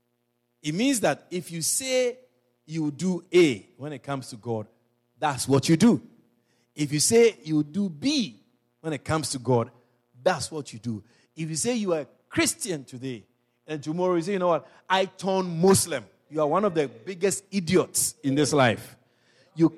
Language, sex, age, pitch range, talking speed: English, male, 50-69, 120-175 Hz, 190 wpm